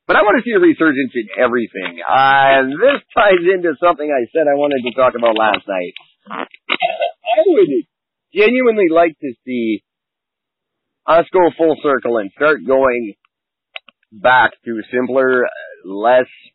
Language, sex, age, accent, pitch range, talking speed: English, male, 40-59, American, 115-190 Hz, 145 wpm